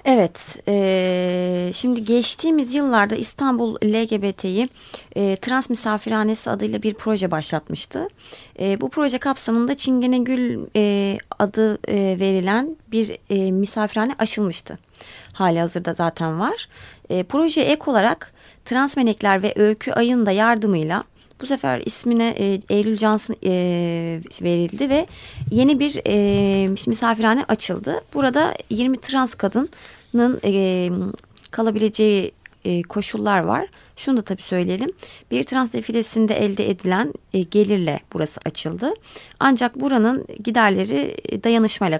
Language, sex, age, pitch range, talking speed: Turkish, female, 30-49, 180-235 Hz, 105 wpm